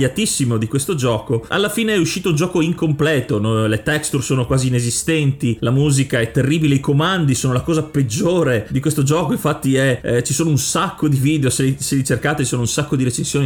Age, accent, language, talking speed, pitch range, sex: 30-49, native, Italian, 210 wpm, 125-155 Hz, male